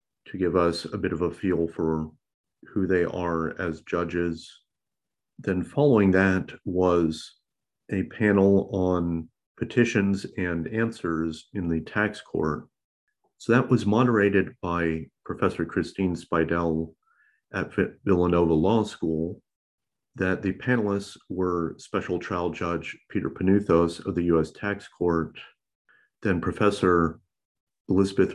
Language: English